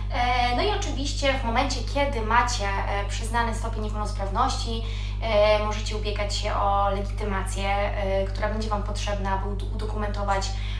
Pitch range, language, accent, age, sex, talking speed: 100-105 Hz, Polish, native, 20-39, female, 115 wpm